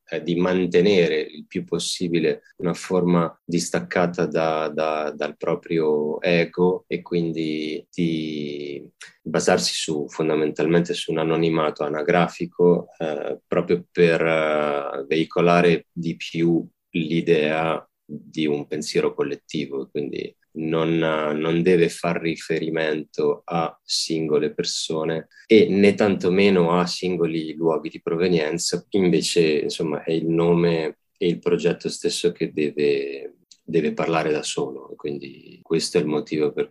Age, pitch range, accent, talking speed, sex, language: 20-39, 80-90 Hz, native, 120 wpm, male, Italian